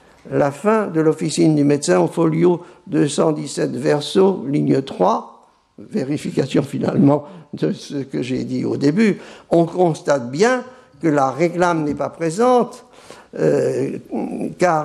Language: French